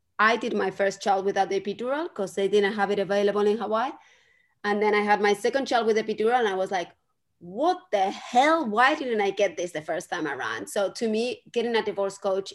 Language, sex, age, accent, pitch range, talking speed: English, female, 20-39, Spanish, 190-225 Hz, 235 wpm